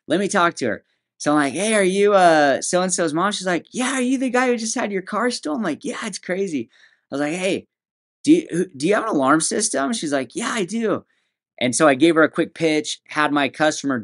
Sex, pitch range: male, 115-165 Hz